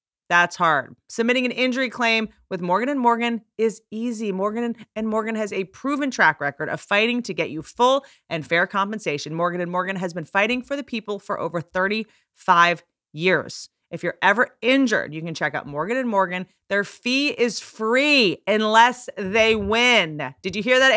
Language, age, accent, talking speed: English, 30-49, American, 170 wpm